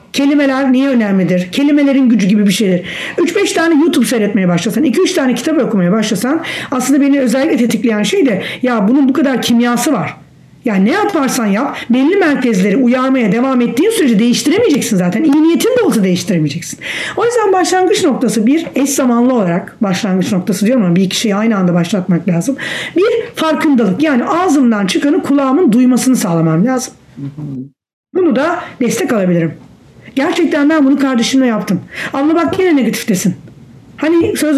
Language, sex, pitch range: English, female, 210-305 Hz